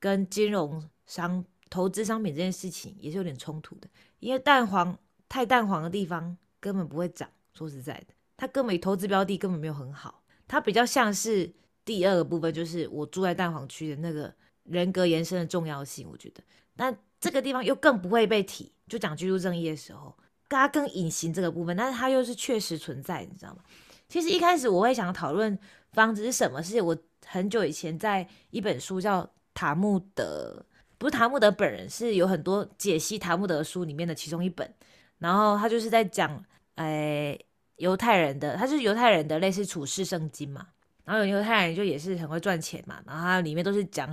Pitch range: 165-215 Hz